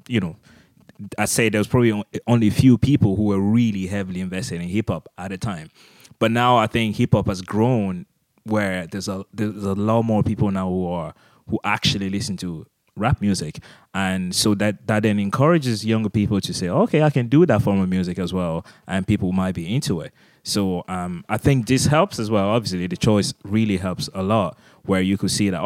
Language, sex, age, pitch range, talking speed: English, male, 20-39, 95-110 Hz, 215 wpm